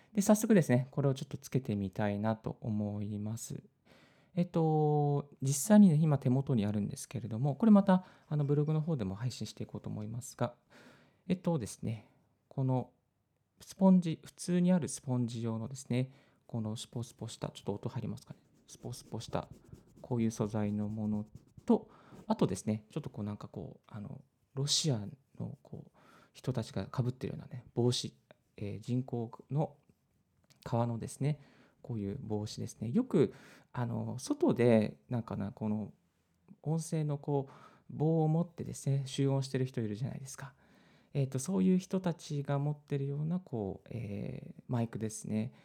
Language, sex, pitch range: Japanese, male, 115-150 Hz